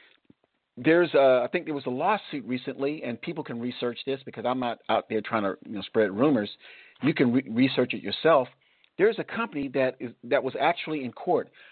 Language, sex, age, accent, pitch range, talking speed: English, male, 50-69, American, 125-155 Hz, 185 wpm